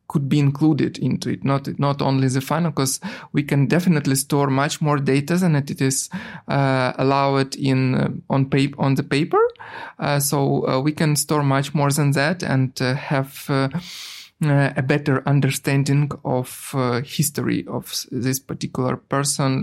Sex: male